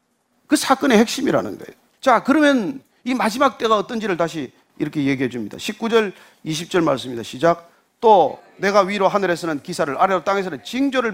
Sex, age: male, 40-59